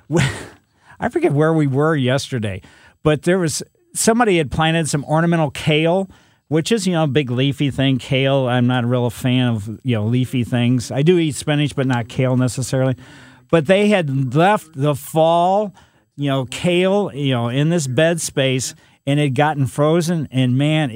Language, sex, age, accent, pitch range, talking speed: English, male, 50-69, American, 130-170 Hz, 185 wpm